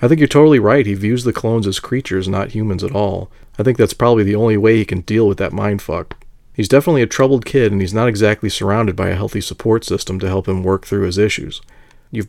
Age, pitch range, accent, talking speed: 40-59, 100-125 Hz, American, 250 wpm